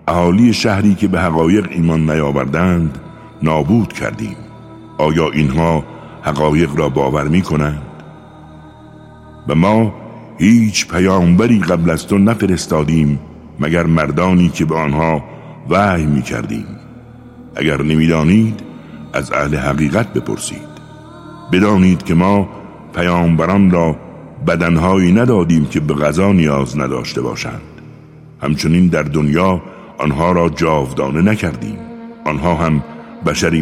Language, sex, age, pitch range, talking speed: Persian, male, 60-79, 80-105 Hz, 110 wpm